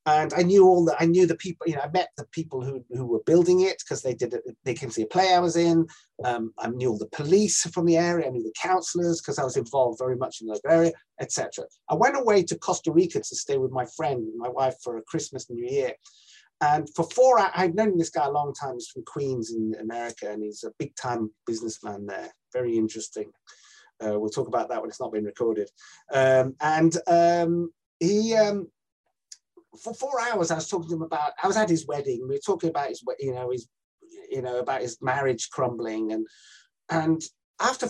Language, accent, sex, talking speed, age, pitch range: English, British, male, 230 wpm, 30-49, 130-185 Hz